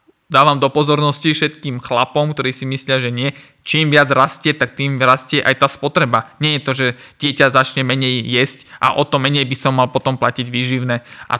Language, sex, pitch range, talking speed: Slovak, male, 135-165 Hz, 200 wpm